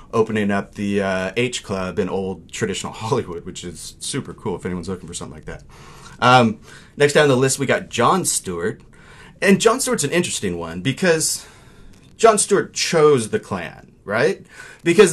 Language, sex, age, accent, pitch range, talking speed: English, male, 30-49, American, 105-145 Hz, 180 wpm